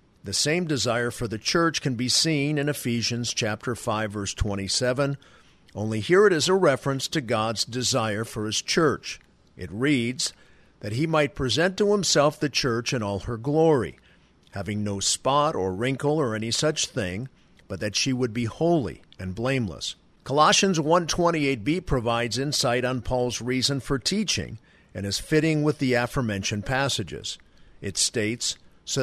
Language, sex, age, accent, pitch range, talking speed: English, male, 50-69, American, 110-150 Hz, 165 wpm